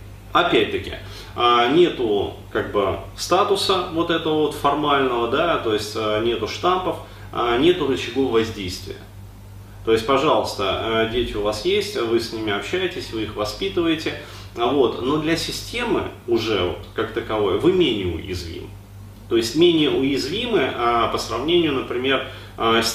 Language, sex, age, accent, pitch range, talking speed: Russian, male, 30-49, native, 100-165 Hz, 130 wpm